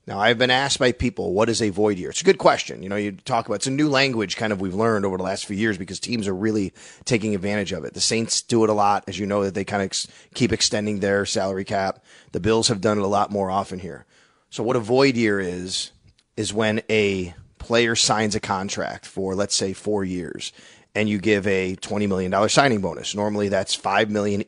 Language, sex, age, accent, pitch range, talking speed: English, male, 30-49, American, 100-115 Hz, 245 wpm